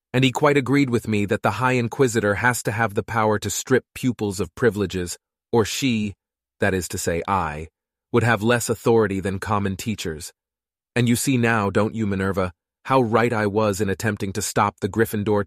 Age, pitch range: 30-49, 100-120 Hz